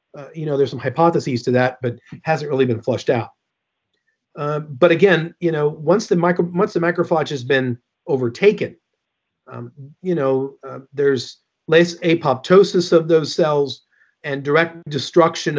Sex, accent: male, American